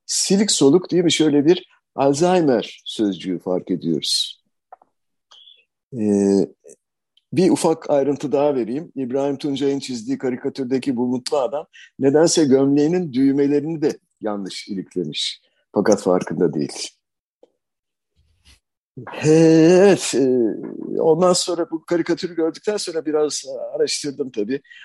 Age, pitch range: 50-69, 125-170 Hz